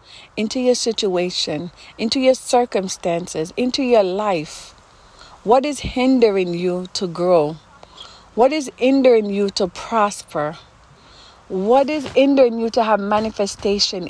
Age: 40-59